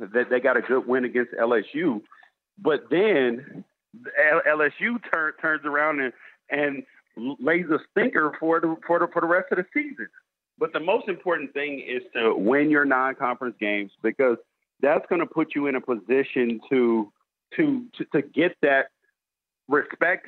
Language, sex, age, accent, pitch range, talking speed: English, male, 50-69, American, 130-165 Hz, 170 wpm